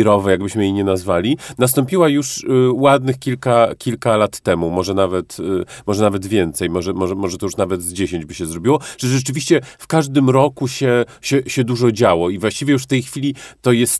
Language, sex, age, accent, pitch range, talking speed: Polish, male, 40-59, native, 105-125 Hz, 205 wpm